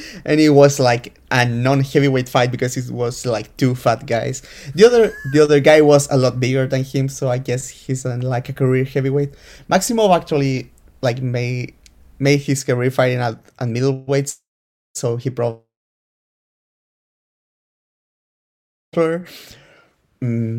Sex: male